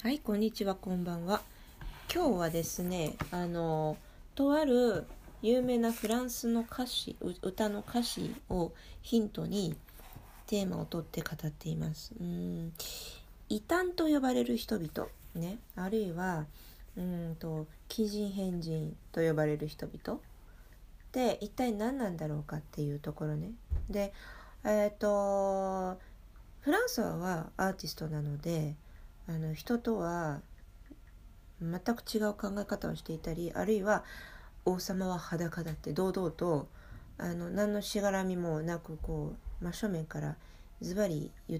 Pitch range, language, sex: 160-215 Hz, Japanese, female